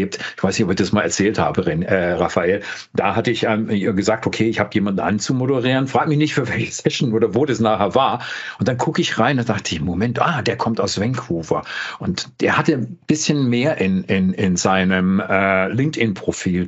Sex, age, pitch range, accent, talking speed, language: male, 50-69, 110-150 Hz, German, 200 wpm, German